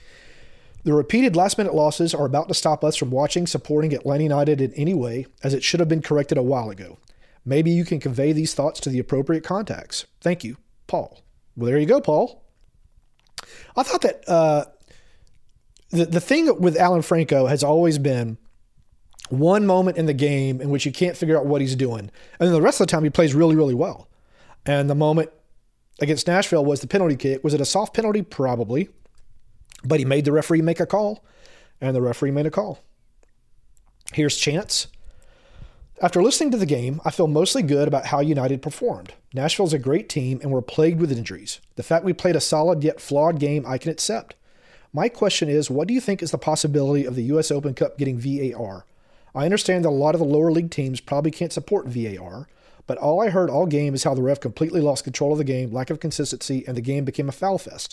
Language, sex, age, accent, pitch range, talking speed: English, male, 40-59, American, 135-170 Hz, 210 wpm